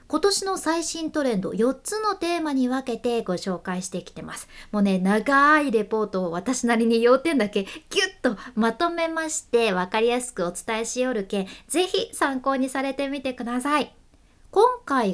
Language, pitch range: Japanese, 205-325 Hz